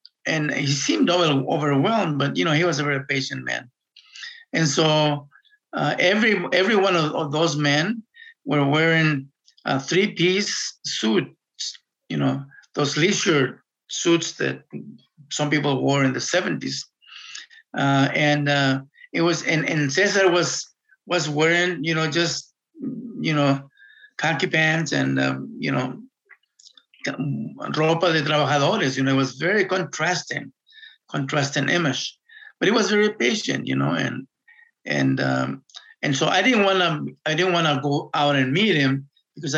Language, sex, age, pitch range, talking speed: English, male, 50-69, 140-185 Hz, 150 wpm